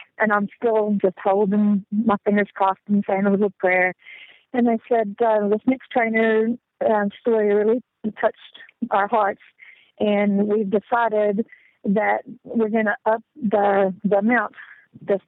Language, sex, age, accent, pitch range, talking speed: English, female, 40-59, American, 200-230 Hz, 150 wpm